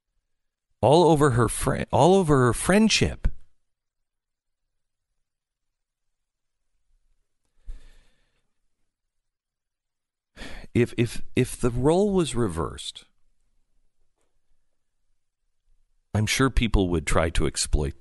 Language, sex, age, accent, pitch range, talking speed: English, male, 50-69, American, 85-130 Hz, 75 wpm